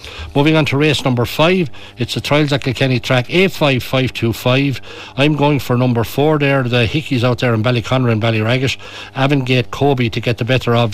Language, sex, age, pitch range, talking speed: English, male, 60-79, 115-135 Hz, 190 wpm